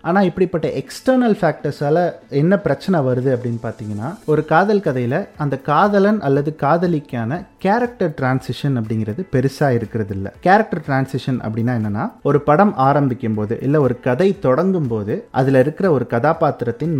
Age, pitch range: 30-49, 120-170 Hz